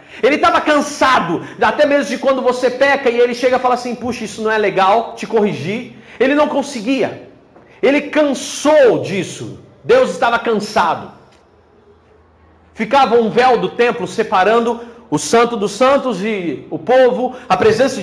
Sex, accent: male, Brazilian